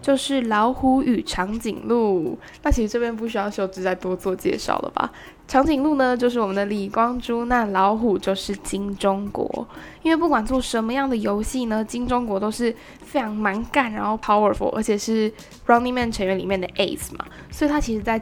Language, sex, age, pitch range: Chinese, female, 10-29, 205-255 Hz